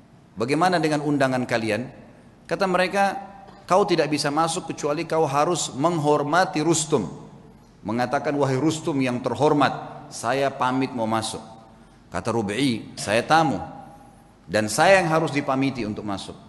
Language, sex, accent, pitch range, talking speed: Indonesian, male, native, 115-150 Hz, 125 wpm